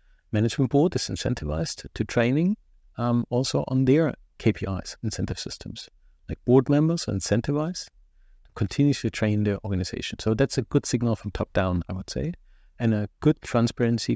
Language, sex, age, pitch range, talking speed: English, male, 50-69, 105-130 Hz, 160 wpm